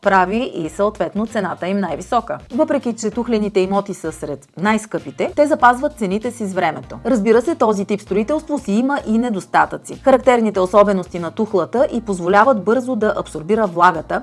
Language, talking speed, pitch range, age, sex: Bulgarian, 160 wpm, 185-250 Hz, 30-49, female